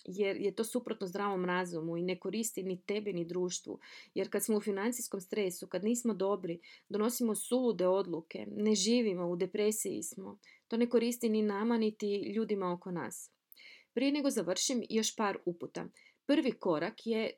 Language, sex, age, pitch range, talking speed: Croatian, female, 30-49, 180-225 Hz, 165 wpm